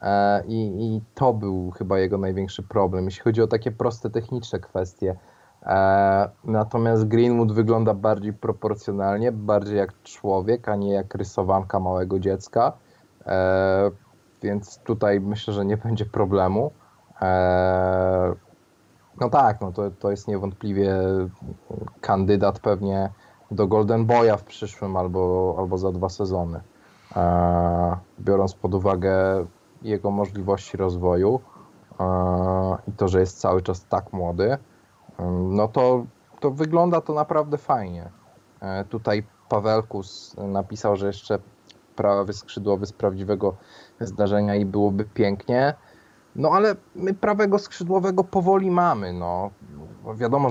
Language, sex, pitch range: Polish, male, 95-110 Hz